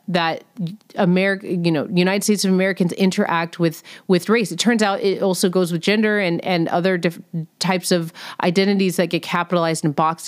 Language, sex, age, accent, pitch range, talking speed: English, female, 30-49, American, 170-220 Hz, 180 wpm